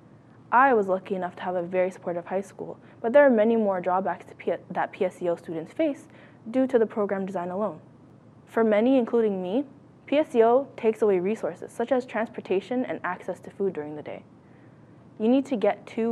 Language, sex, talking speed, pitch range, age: English, female, 190 wpm, 180-230 Hz, 20-39